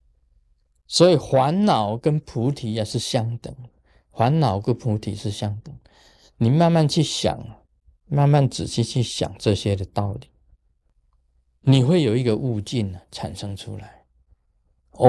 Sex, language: male, Chinese